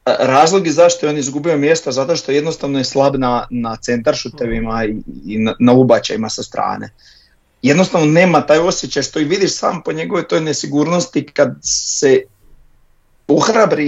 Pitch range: 130-155 Hz